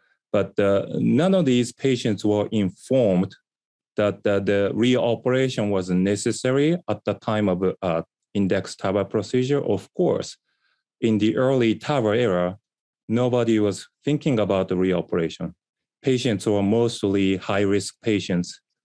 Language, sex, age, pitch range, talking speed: English, male, 30-49, 100-120 Hz, 125 wpm